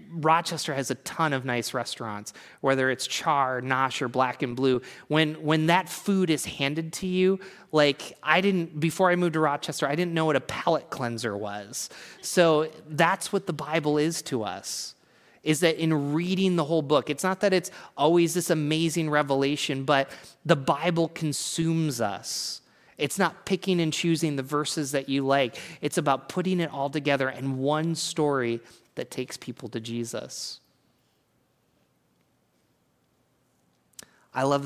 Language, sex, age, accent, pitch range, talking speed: English, male, 30-49, American, 120-160 Hz, 160 wpm